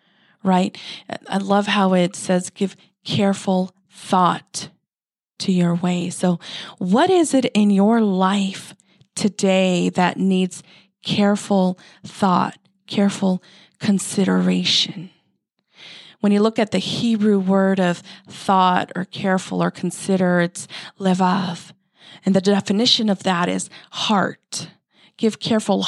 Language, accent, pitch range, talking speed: English, American, 180-210 Hz, 115 wpm